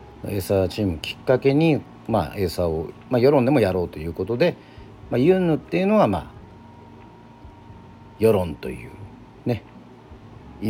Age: 40-59